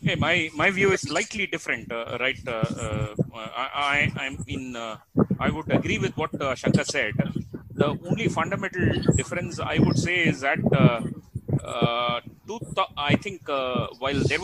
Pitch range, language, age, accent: 135-175 Hz, English, 30-49, Indian